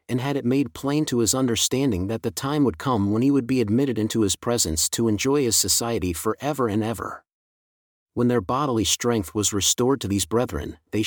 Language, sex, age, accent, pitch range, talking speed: English, male, 40-59, American, 100-125 Hz, 210 wpm